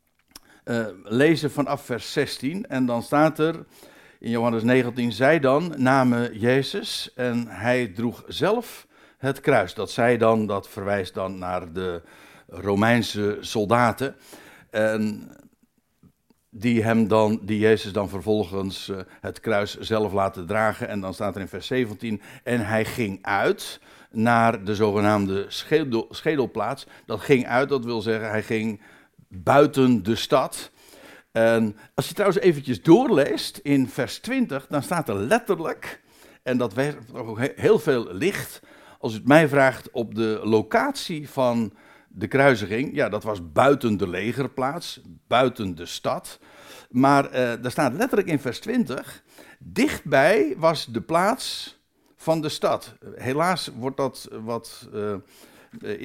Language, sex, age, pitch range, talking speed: Dutch, male, 60-79, 105-135 Hz, 145 wpm